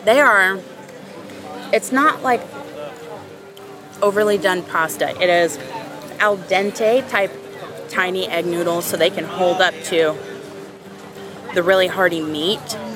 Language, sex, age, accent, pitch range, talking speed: English, female, 20-39, American, 165-220 Hz, 120 wpm